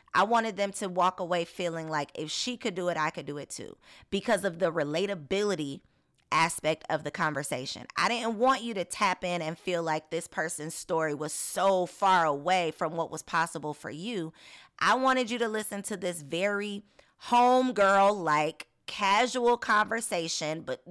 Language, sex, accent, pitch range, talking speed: English, female, American, 155-200 Hz, 175 wpm